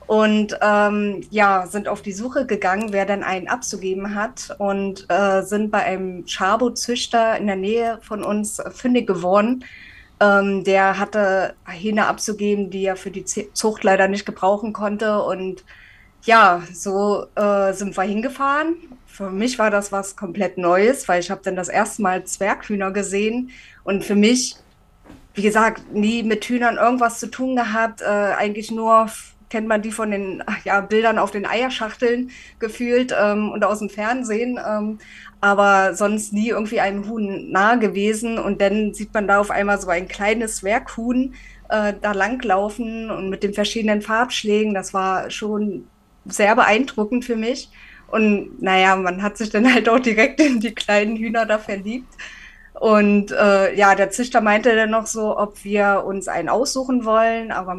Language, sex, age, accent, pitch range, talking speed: German, female, 20-39, German, 195-225 Hz, 165 wpm